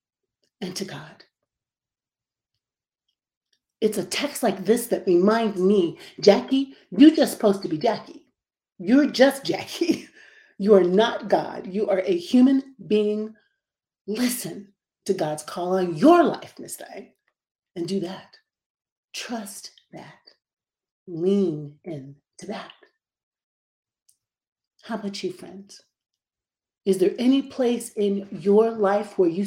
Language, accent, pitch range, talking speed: English, American, 190-245 Hz, 125 wpm